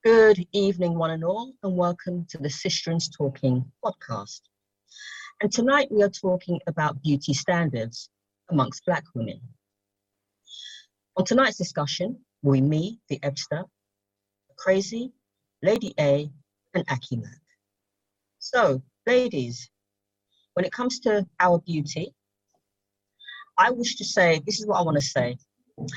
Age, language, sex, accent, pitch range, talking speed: 40-59, English, female, British, 130-185 Hz, 125 wpm